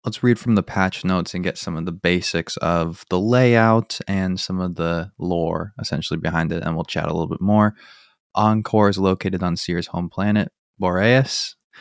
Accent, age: American, 20-39